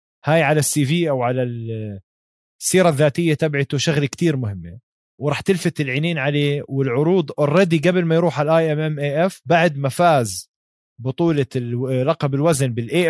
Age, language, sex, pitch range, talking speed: 20-39, Arabic, male, 125-160 Hz, 135 wpm